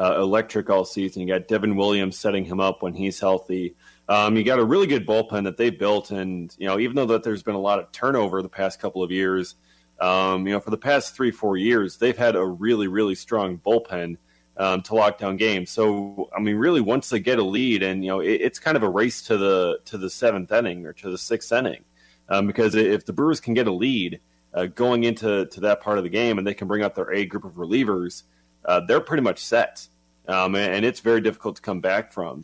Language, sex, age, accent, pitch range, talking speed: English, male, 30-49, American, 95-110 Hz, 245 wpm